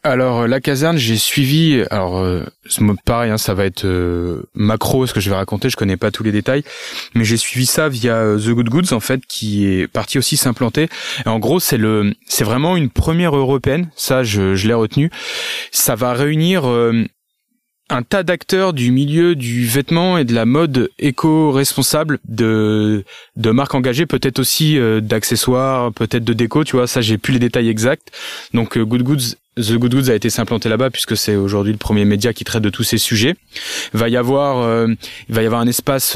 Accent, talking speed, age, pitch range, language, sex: French, 210 wpm, 20-39, 110-140 Hz, French, male